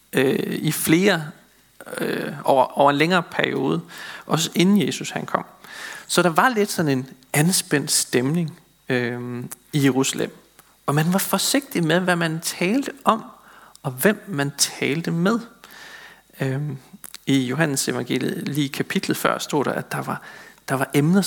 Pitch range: 140-195 Hz